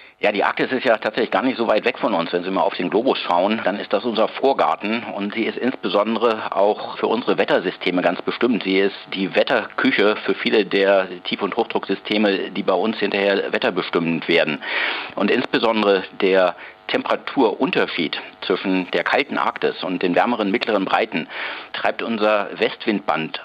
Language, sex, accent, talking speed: German, male, German, 175 wpm